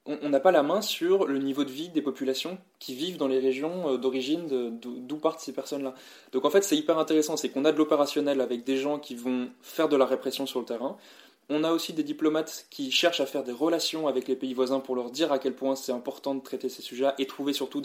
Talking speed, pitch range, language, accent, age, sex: 260 wpm, 130-150 Hz, French, French, 20-39, male